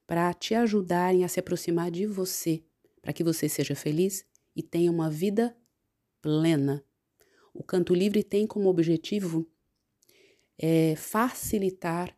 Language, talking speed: Portuguese, 125 wpm